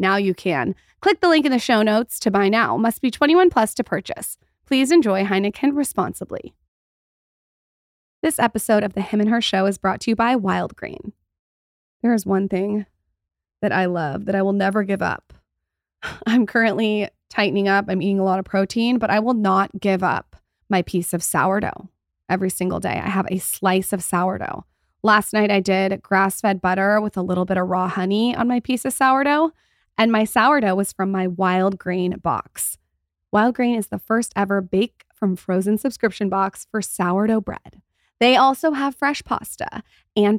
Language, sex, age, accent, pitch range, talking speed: English, female, 20-39, American, 190-230 Hz, 190 wpm